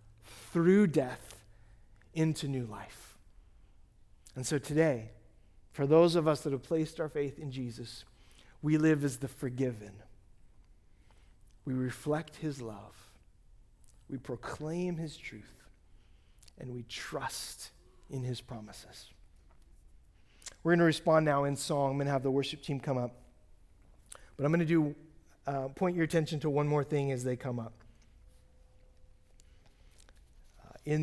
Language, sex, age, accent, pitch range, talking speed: English, male, 40-59, American, 100-150 Hz, 130 wpm